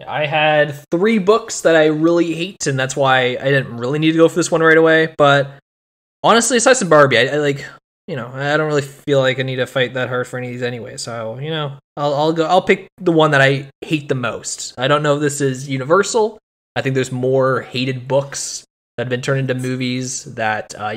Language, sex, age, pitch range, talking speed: English, male, 20-39, 125-160 Hz, 235 wpm